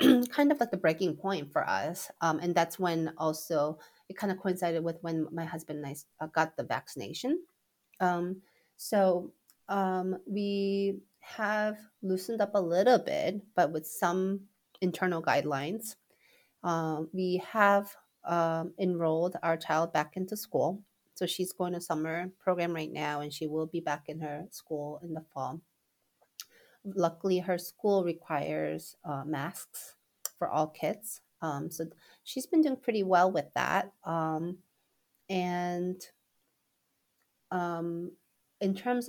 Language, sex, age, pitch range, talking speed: English, female, 30-49, 160-195 Hz, 140 wpm